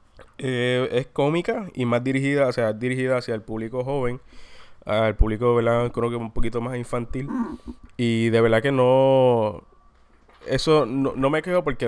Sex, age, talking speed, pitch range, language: male, 20-39, 165 wpm, 115-130 Hz, Spanish